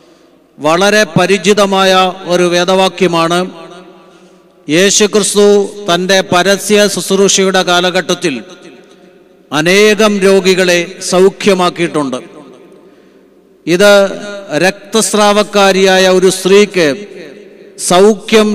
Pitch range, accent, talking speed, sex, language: 185-205 Hz, native, 55 wpm, male, Malayalam